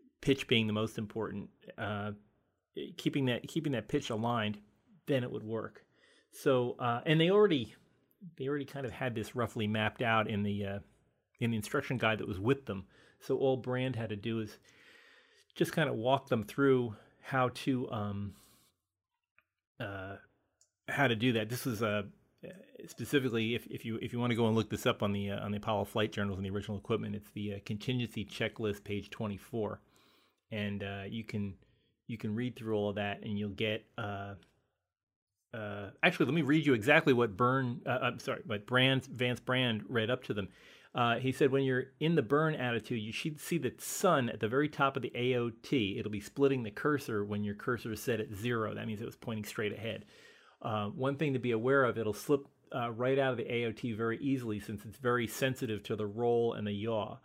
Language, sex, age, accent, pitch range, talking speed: English, male, 30-49, American, 105-130 Hz, 210 wpm